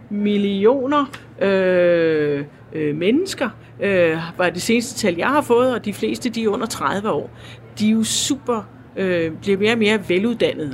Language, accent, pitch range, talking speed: Danish, native, 170-220 Hz, 170 wpm